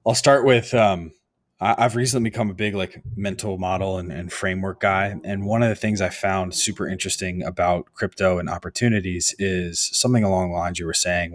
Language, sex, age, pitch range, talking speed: English, male, 20-39, 90-110 Hz, 195 wpm